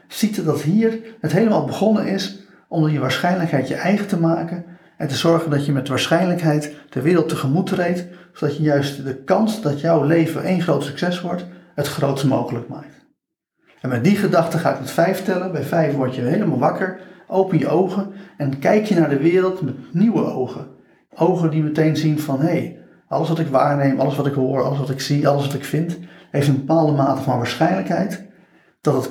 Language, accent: Dutch, Dutch